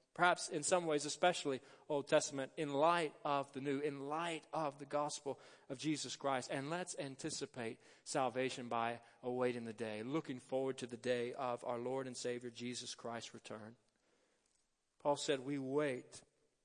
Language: English